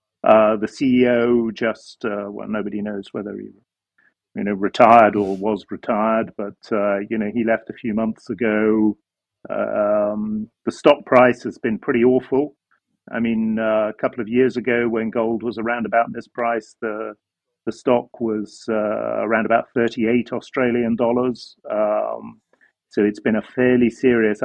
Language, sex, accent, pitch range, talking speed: English, male, British, 110-125 Hz, 160 wpm